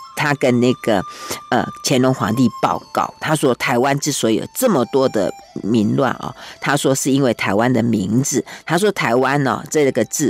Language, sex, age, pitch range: Chinese, female, 50-69, 120-165 Hz